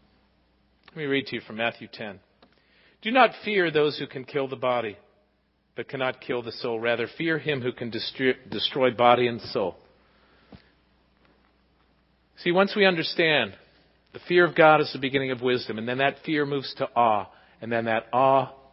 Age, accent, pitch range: 40-59, American, 115-155 Hz